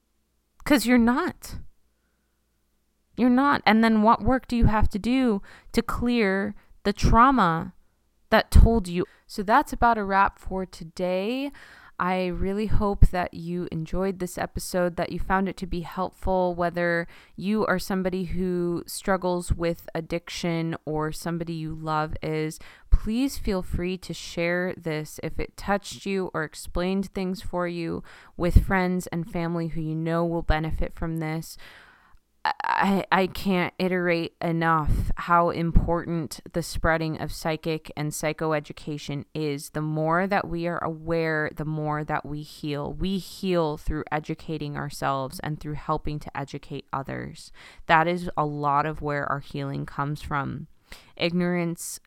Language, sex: English, female